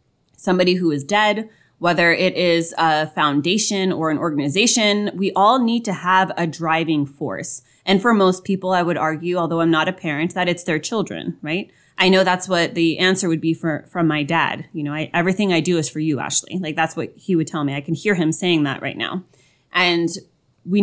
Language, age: English, 20-39